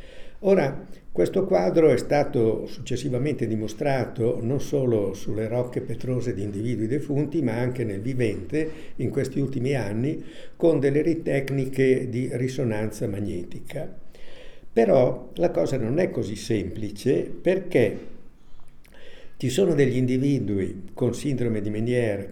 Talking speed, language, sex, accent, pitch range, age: 120 wpm, Italian, male, native, 115-145 Hz, 60-79